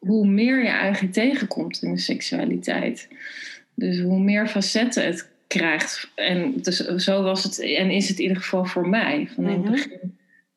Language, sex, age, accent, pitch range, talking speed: Dutch, female, 20-39, Dutch, 185-220 Hz, 175 wpm